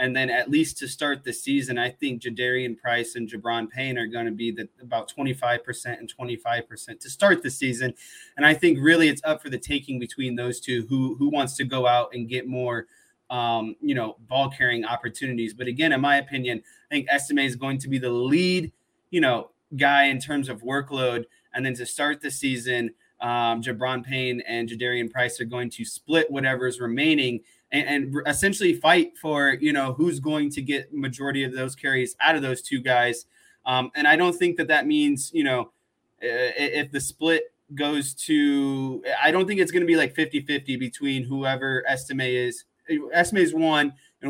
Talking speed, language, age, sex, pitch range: 200 wpm, English, 20-39, male, 125-150 Hz